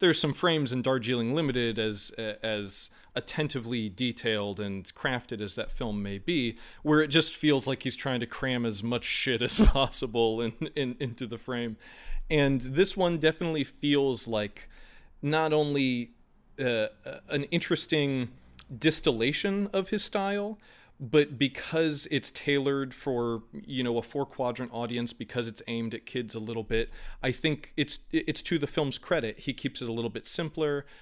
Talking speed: 165 wpm